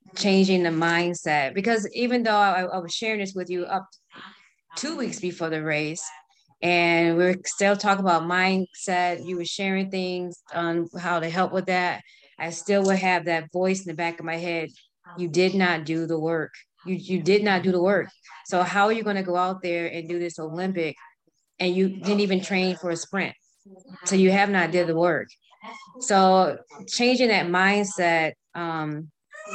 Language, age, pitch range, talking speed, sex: English, 20-39, 165-195 Hz, 190 wpm, female